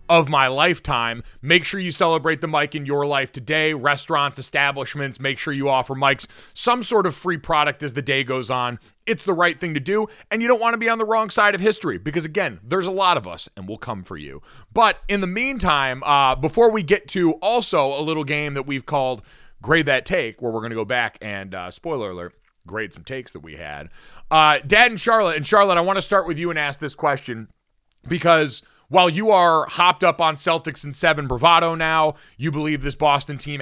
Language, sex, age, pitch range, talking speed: English, male, 30-49, 135-180 Hz, 230 wpm